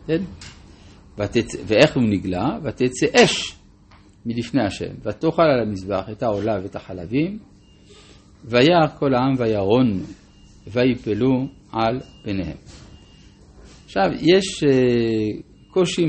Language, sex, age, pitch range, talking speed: Hebrew, male, 50-69, 100-150 Hz, 95 wpm